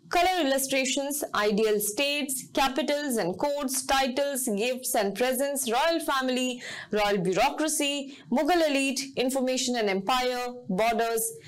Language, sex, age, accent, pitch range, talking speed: English, female, 20-39, Indian, 220-280 Hz, 110 wpm